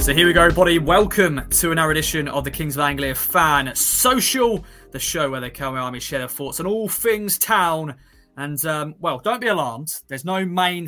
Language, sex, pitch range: English, male, 135-180 Hz